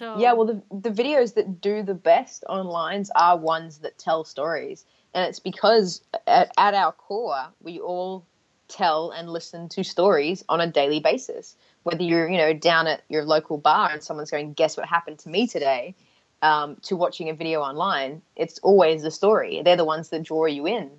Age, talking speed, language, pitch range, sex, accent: 20-39, 195 wpm, English, 160-205 Hz, female, Australian